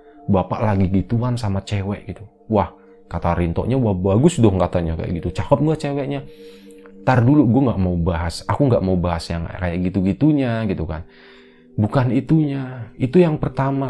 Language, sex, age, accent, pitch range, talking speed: Indonesian, male, 30-49, native, 95-140 Hz, 165 wpm